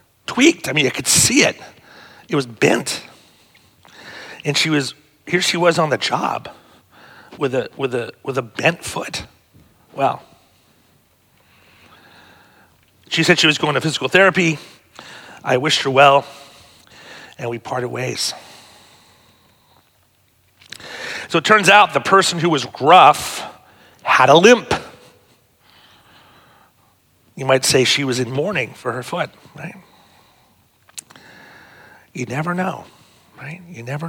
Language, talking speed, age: English, 130 wpm, 40-59